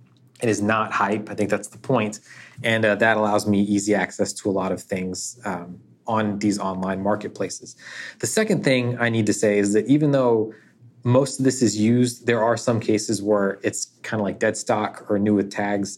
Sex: male